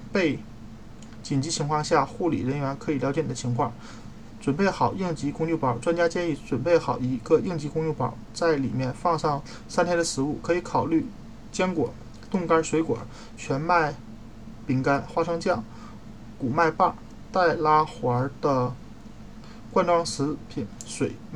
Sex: male